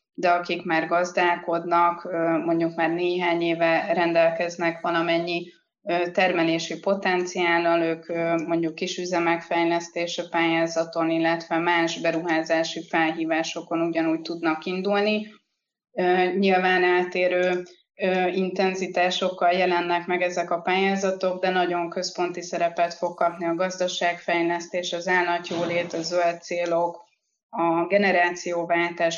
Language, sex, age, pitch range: Hungarian, female, 20-39, 165-180 Hz